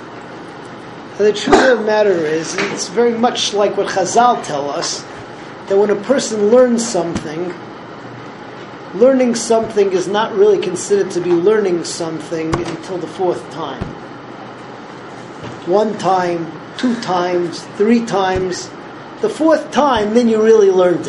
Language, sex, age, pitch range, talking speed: English, male, 40-59, 165-230 Hz, 135 wpm